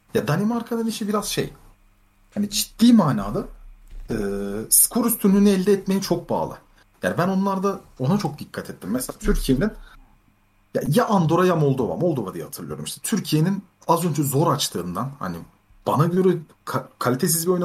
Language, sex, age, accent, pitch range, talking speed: Turkish, male, 40-59, native, 130-205 Hz, 150 wpm